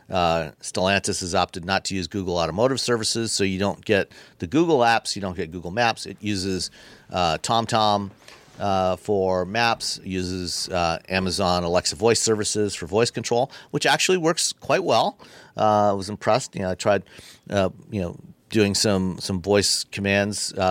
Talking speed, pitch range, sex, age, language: 175 wpm, 90-105 Hz, male, 50-69, English